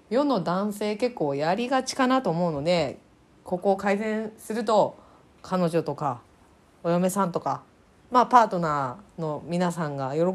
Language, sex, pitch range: Japanese, female, 165-235 Hz